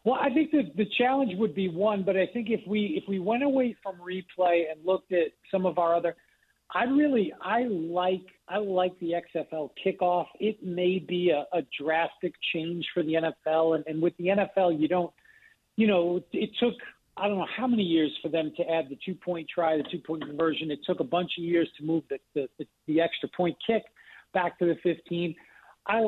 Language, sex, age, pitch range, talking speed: English, male, 50-69, 165-195 Hz, 220 wpm